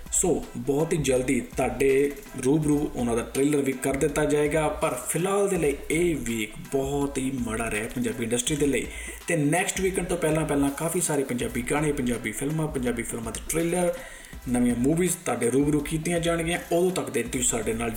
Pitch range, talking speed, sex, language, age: 135-165 Hz, 175 wpm, male, Punjabi, 20-39